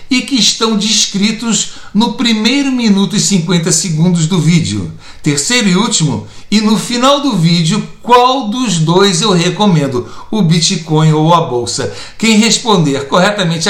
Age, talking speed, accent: 60-79, 145 wpm, Brazilian